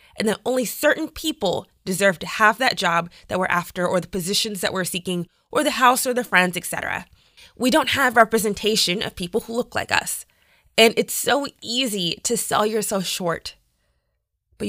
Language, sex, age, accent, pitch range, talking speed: English, female, 20-39, American, 180-245 Hz, 190 wpm